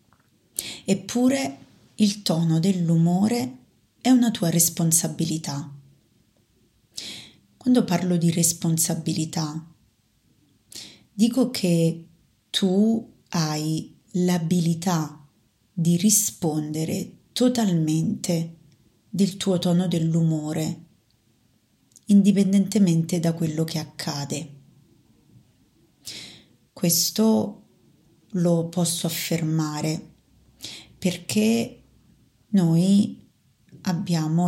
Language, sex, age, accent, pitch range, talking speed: Italian, female, 30-49, native, 155-185 Hz, 65 wpm